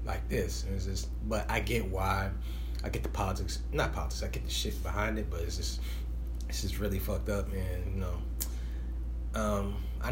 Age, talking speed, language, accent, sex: 30-49, 200 wpm, English, American, male